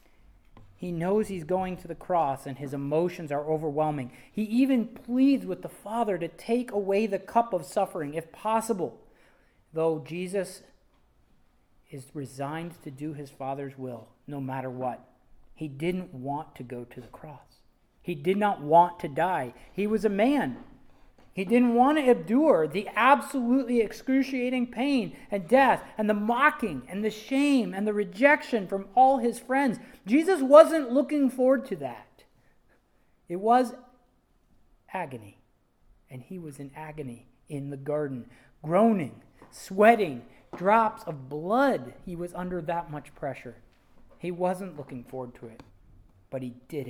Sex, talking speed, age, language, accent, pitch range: male, 150 wpm, 40-59, English, American, 135-225 Hz